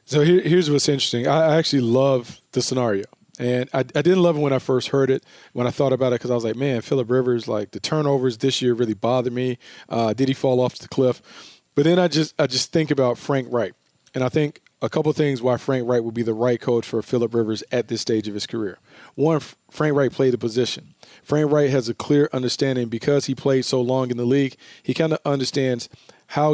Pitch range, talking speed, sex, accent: 125-150 Hz, 240 wpm, male, American